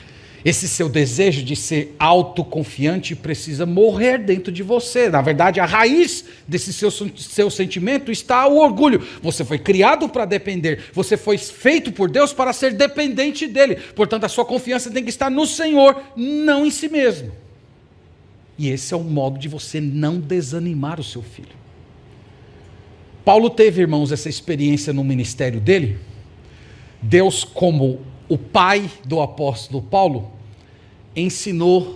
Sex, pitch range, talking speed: male, 135-190 Hz, 145 wpm